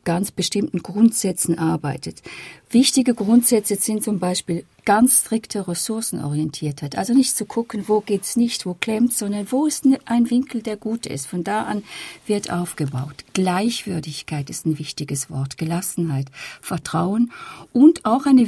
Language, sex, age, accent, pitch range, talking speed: German, female, 50-69, German, 175-235 Hz, 145 wpm